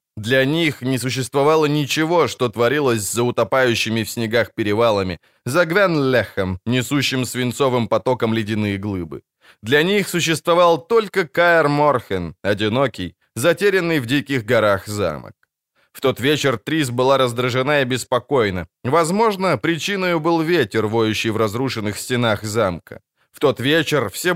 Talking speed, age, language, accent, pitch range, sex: 130 wpm, 20-39, Ukrainian, native, 120-160 Hz, male